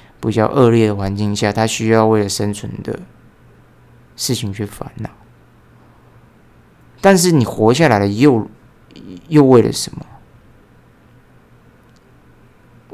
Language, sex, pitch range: Chinese, male, 105-125 Hz